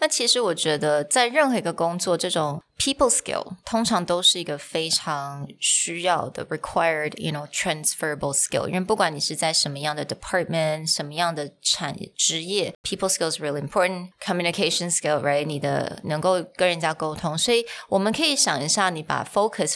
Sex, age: female, 20-39